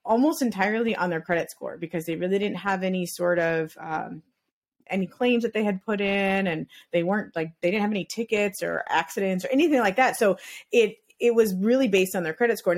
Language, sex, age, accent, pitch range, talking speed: English, female, 30-49, American, 175-225 Hz, 220 wpm